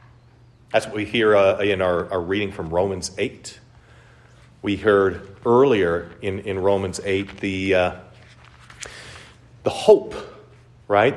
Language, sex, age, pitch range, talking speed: English, male, 40-59, 115-155 Hz, 130 wpm